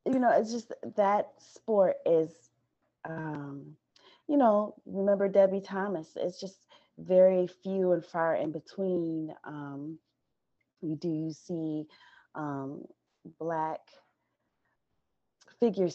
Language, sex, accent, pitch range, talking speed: English, female, American, 145-170 Hz, 110 wpm